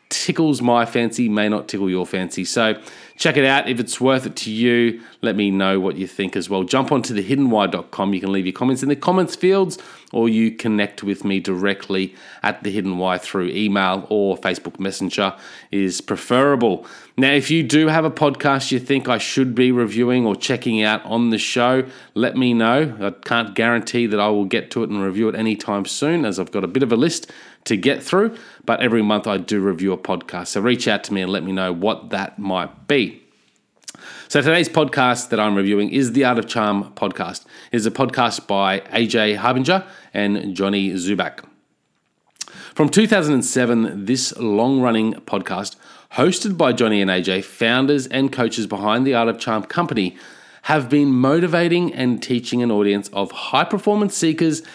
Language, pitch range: English, 100-135 Hz